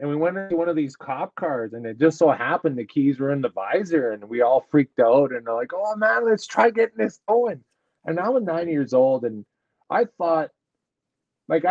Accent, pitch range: American, 130-175 Hz